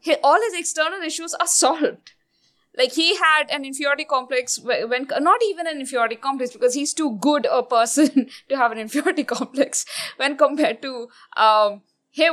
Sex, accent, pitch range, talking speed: female, Indian, 230-300 Hz, 160 wpm